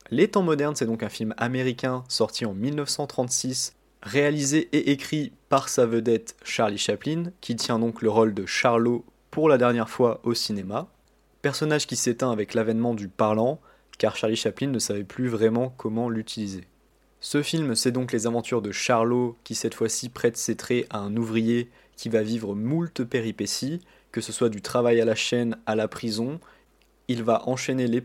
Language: French